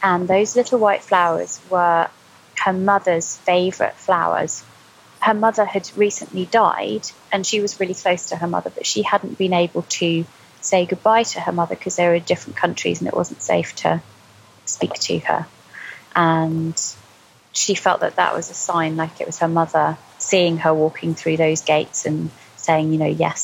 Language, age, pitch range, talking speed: English, 20-39, 155-180 Hz, 185 wpm